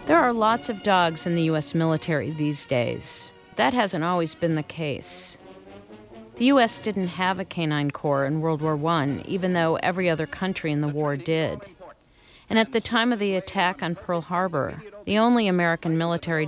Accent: American